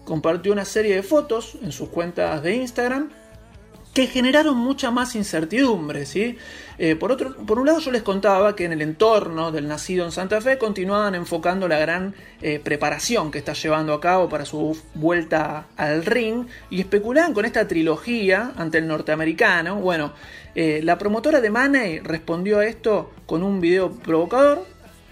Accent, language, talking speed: Argentinian, Spanish, 165 wpm